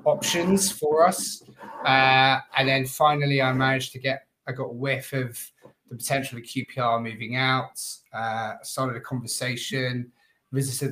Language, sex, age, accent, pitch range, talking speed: English, male, 20-39, British, 125-140 Hz, 150 wpm